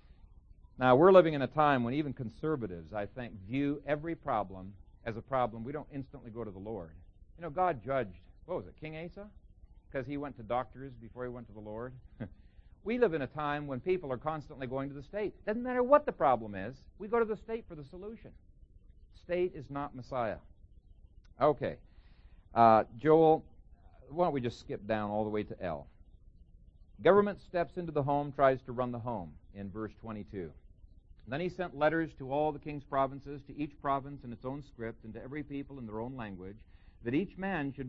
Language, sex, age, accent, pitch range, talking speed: English, male, 50-69, American, 100-140 Hz, 205 wpm